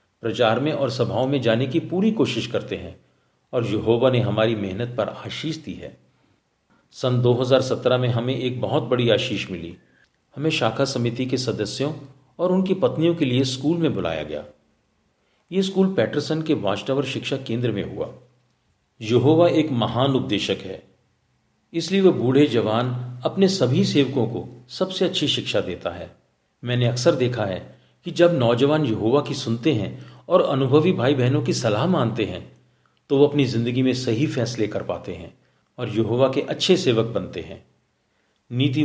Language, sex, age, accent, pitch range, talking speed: Hindi, male, 50-69, native, 115-150 Hz, 165 wpm